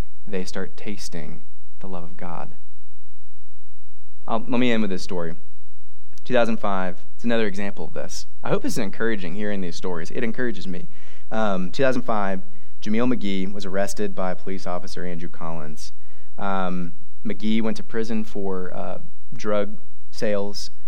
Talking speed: 145 wpm